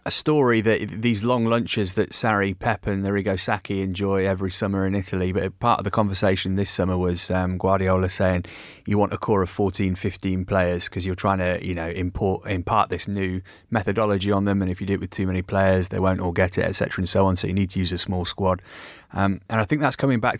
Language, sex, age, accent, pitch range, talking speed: English, male, 30-49, British, 90-105 Hz, 240 wpm